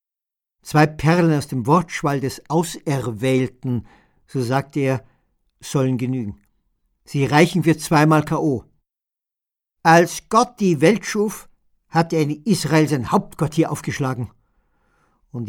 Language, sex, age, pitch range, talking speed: German, male, 50-69, 125-155 Hz, 120 wpm